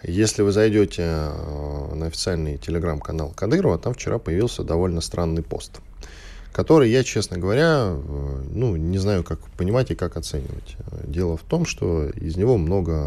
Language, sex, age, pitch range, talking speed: Russian, male, 10-29, 80-110 Hz, 145 wpm